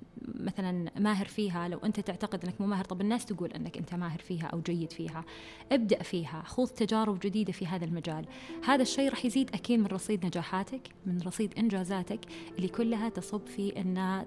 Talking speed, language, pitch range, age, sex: 175 wpm, Arabic, 180-215 Hz, 20-39, female